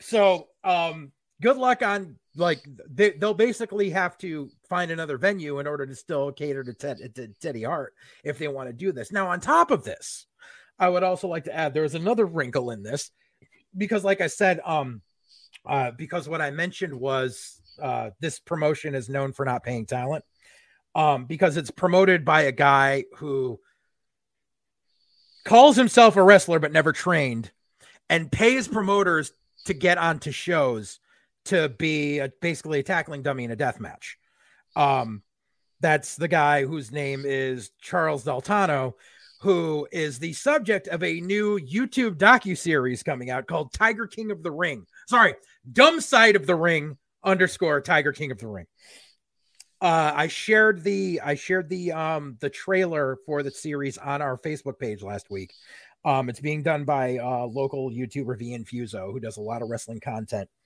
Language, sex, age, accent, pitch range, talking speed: English, male, 30-49, American, 135-185 Hz, 170 wpm